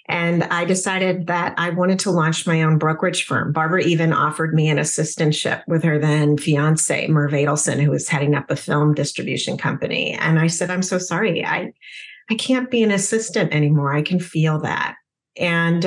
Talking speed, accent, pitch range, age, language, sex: 190 wpm, American, 150-185 Hz, 40-59, English, female